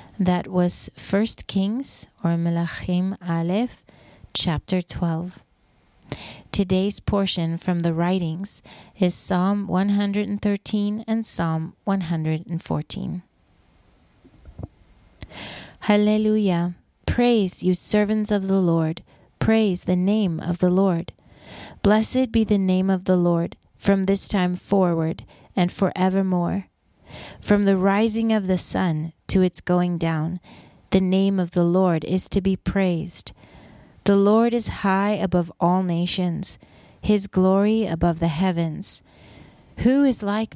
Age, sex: 30-49, female